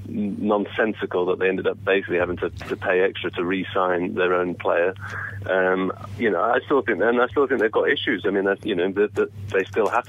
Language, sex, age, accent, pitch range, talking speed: English, male, 30-49, British, 95-105 Hz, 240 wpm